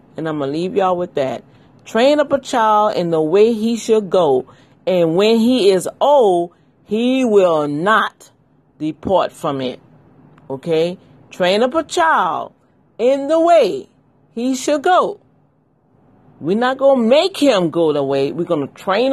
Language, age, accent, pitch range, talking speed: English, 40-59, American, 165-250 Hz, 165 wpm